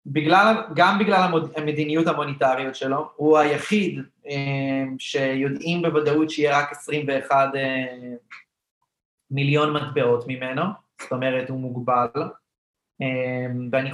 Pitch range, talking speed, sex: 125-150 Hz, 90 wpm, male